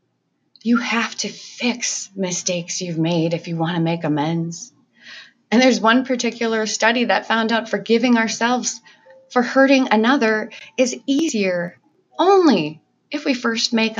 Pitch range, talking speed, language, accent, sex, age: 190-255 Hz, 140 wpm, English, American, female, 30-49